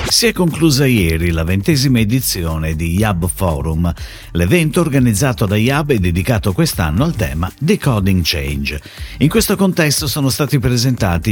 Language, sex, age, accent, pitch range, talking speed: Italian, male, 50-69, native, 90-140 Hz, 145 wpm